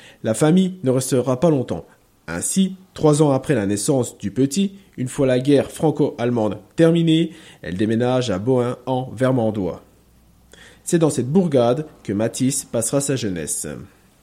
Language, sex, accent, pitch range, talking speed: French, male, French, 115-165 Hz, 150 wpm